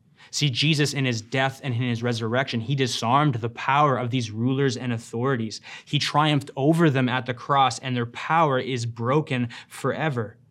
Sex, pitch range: male, 120-145 Hz